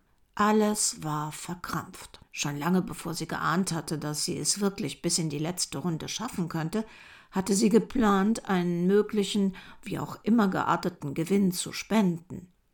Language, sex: German, female